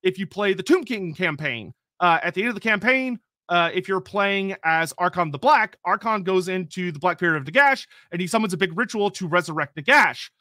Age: 30-49